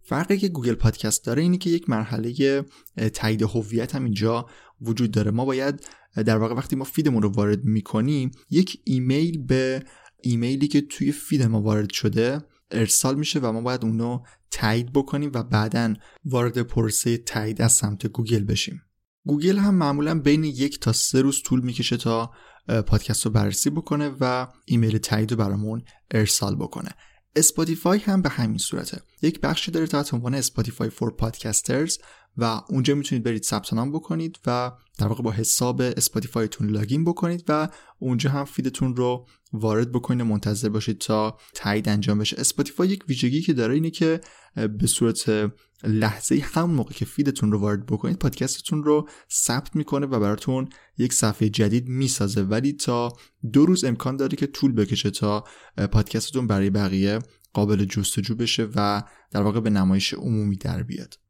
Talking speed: 160 wpm